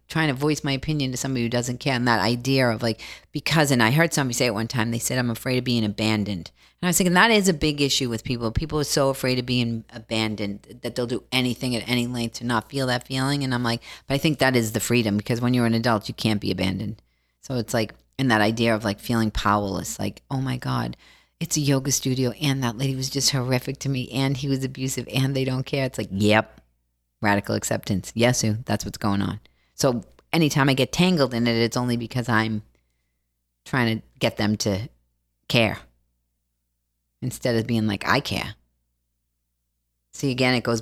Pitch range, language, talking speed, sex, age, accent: 105-140 Hz, English, 220 wpm, female, 40-59, American